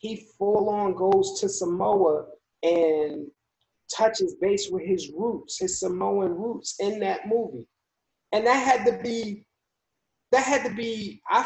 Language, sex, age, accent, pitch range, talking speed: English, male, 30-49, American, 175-215 Hz, 145 wpm